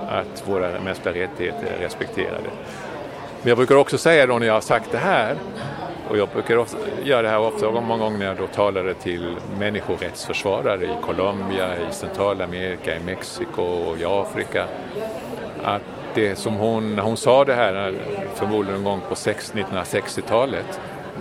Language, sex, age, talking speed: Swedish, male, 50-69, 160 wpm